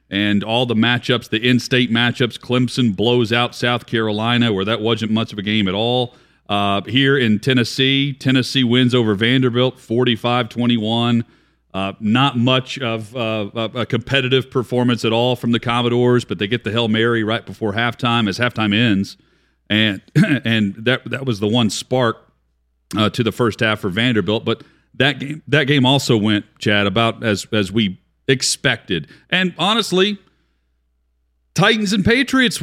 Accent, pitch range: American, 105-130 Hz